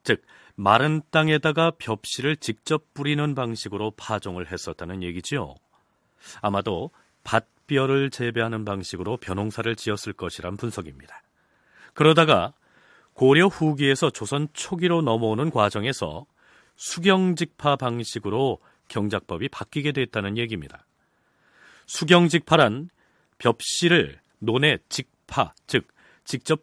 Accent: native